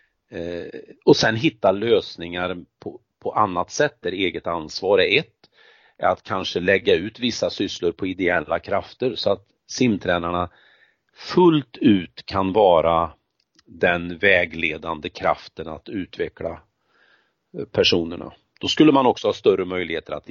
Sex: male